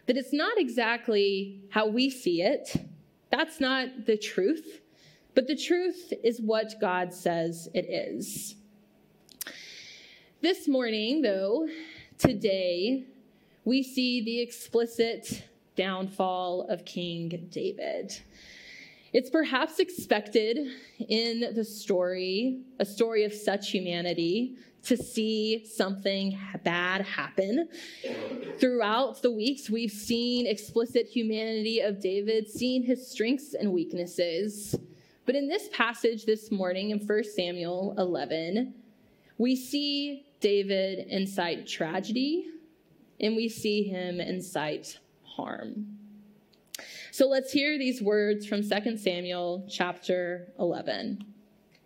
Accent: American